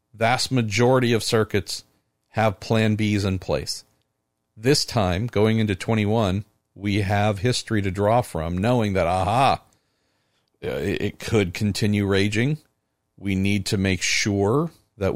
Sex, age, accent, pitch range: male, 50-69, American, 95-115 Hz